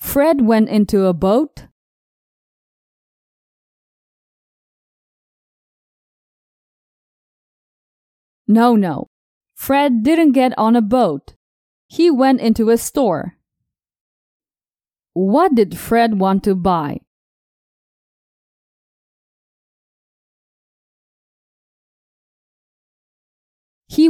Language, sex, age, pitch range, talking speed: English, female, 30-49, 200-270 Hz, 60 wpm